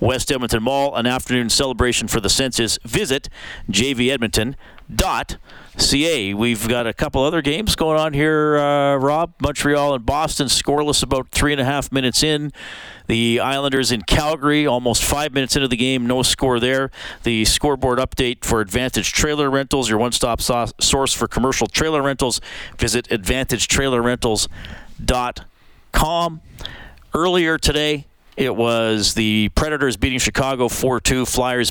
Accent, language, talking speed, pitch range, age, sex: American, English, 135 wpm, 115-145 Hz, 40-59, male